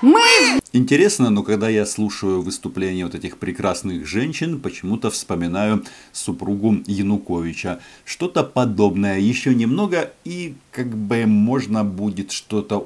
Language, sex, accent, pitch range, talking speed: Russian, male, native, 95-130 Hz, 110 wpm